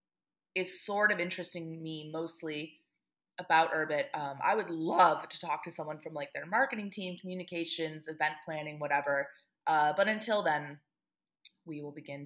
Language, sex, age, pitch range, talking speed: English, female, 30-49, 155-200 Hz, 155 wpm